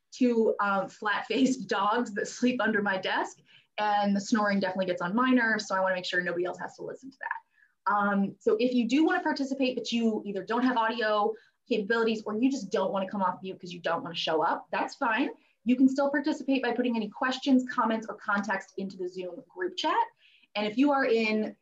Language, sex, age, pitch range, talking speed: English, female, 20-39, 195-245 Hz, 220 wpm